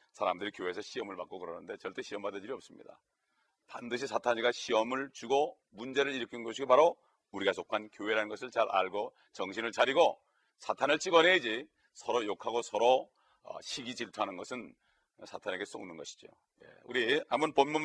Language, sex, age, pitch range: Korean, male, 40-59, 125-150 Hz